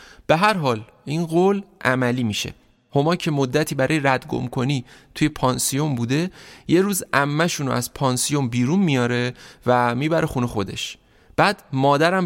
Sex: male